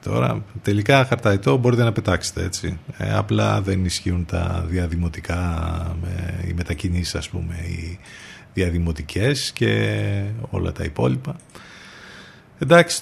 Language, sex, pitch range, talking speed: Greek, male, 90-115 Hz, 115 wpm